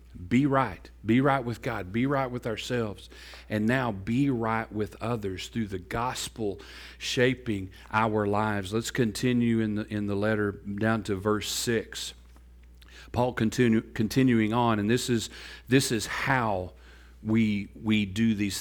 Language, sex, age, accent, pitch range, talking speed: English, male, 40-59, American, 105-125 Hz, 150 wpm